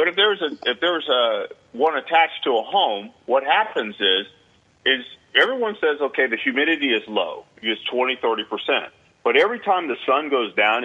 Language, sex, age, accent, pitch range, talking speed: English, male, 40-59, American, 115-165 Hz, 185 wpm